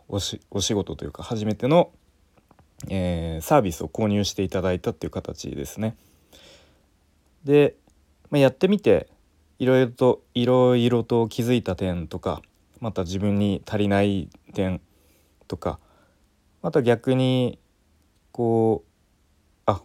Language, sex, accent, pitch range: Japanese, male, native, 85-125 Hz